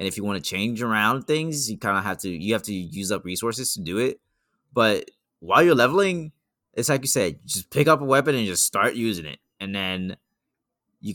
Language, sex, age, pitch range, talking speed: English, male, 20-39, 90-115 Hz, 230 wpm